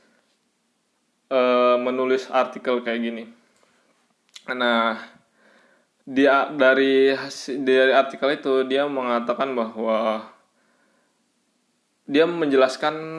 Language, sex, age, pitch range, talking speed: Indonesian, male, 20-39, 120-135 Hz, 70 wpm